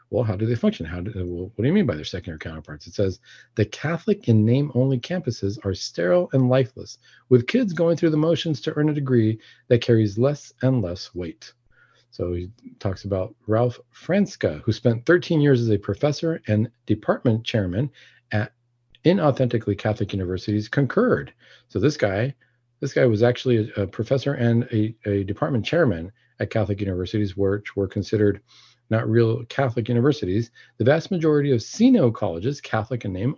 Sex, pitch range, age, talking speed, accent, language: male, 105-140 Hz, 40-59, 175 wpm, American, English